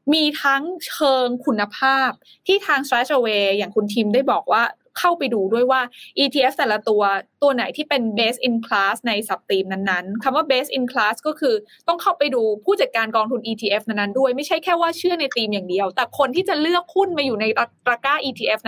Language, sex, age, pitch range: Thai, female, 20-39, 220-290 Hz